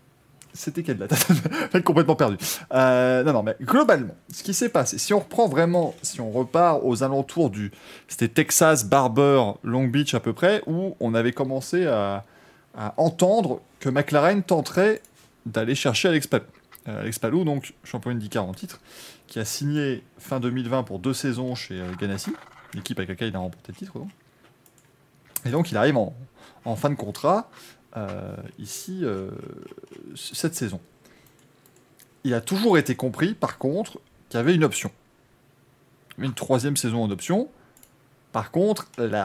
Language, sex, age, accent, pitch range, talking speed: French, male, 20-39, French, 115-160 Hz, 165 wpm